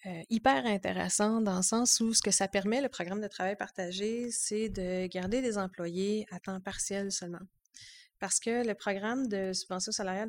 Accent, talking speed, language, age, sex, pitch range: Canadian, 185 wpm, French, 30-49, female, 185-220 Hz